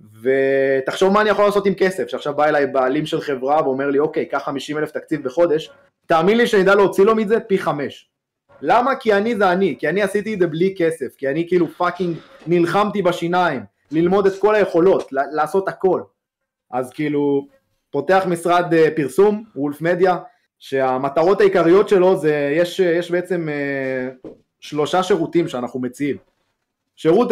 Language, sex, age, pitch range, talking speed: Hebrew, male, 20-39, 140-195 Hz, 160 wpm